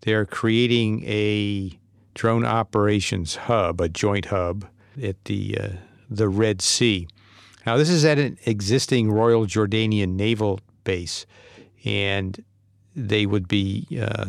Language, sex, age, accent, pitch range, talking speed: English, male, 50-69, American, 100-115 Hz, 125 wpm